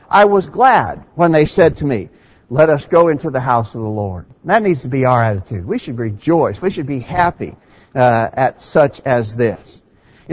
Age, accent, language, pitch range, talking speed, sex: 60-79, American, English, 125-175 Hz, 215 wpm, male